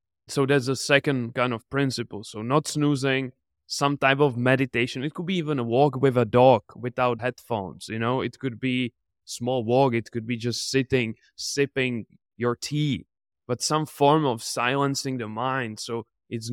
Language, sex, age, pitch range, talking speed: English, male, 20-39, 115-140 Hz, 180 wpm